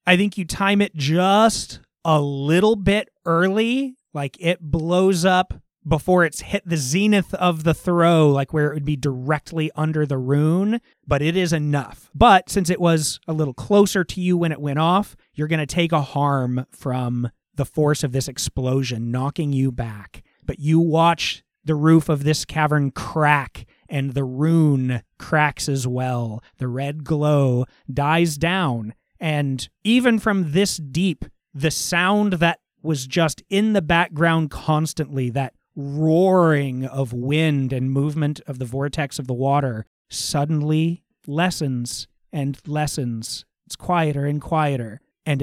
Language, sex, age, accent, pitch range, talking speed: English, male, 30-49, American, 135-170 Hz, 155 wpm